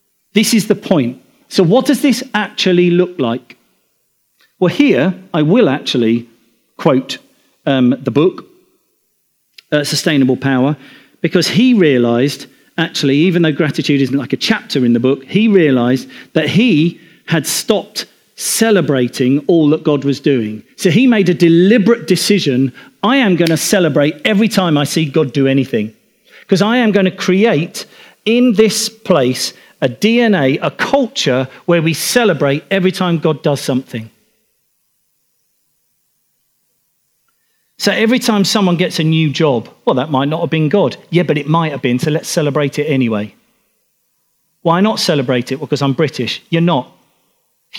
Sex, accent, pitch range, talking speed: male, British, 140-205 Hz, 155 wpm